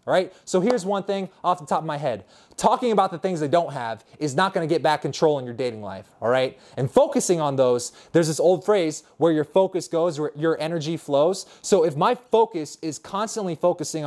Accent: American